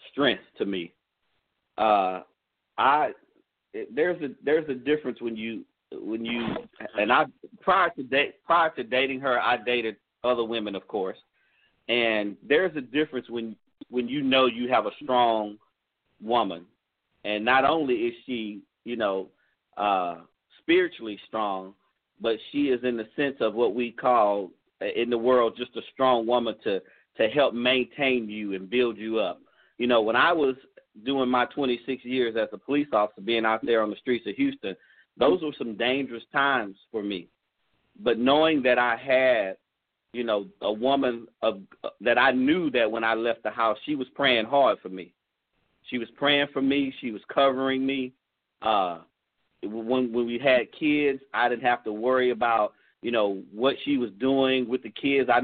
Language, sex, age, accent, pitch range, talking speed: English, male, 40-59, American, 110-135 Hz, 175 wpm